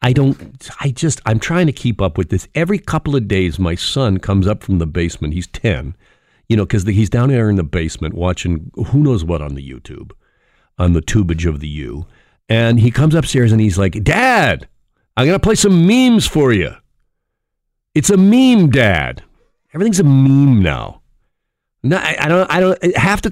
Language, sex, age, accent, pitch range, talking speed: English, male, 50-69, American, 85-140 Hz, 200 wpm